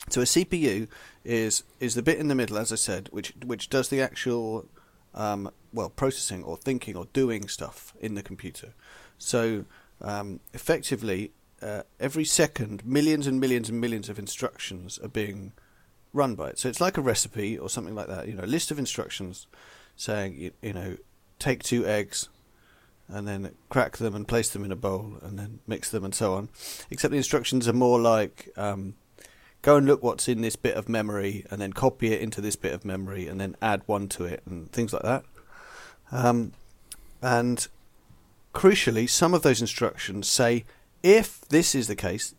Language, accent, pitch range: English, British, 100-125 Hz